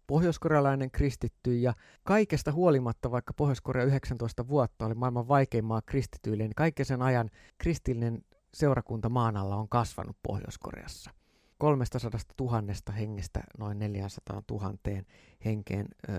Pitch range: 110-145 Hz